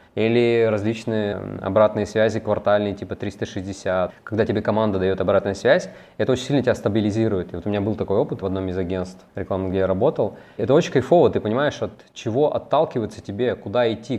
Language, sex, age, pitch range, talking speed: Russian, male, 20-39, 100-125 Hz, 185 wpm